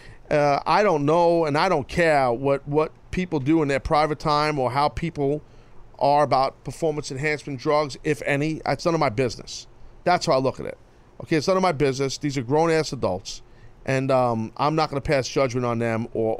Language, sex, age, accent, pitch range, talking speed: English, male, 40-59, American, 130-165 Hz, 210 wpm